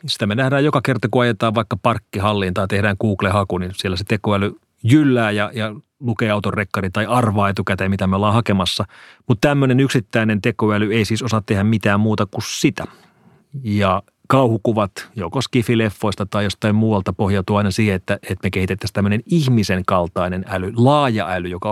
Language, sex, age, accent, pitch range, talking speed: Finnish, male, 30-49, native, 100-130 Hz, 165 wpm